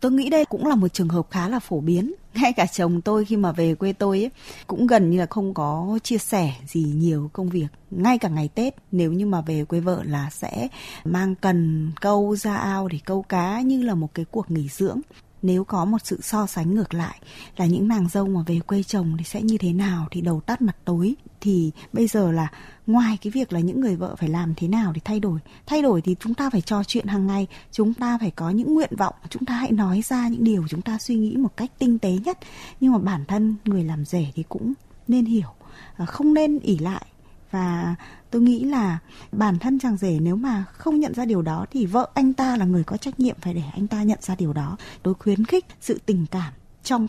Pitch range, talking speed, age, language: 170-230 Hz, 245 wpm, 20-39, Vietnamese